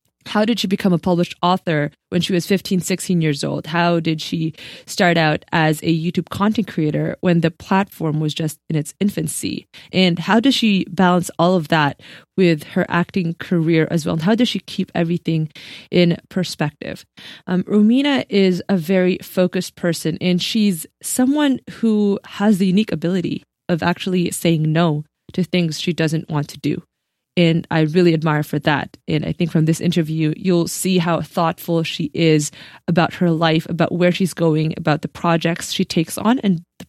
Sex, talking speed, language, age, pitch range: female, 185 wpm, English, 20-39, 155-185 Hz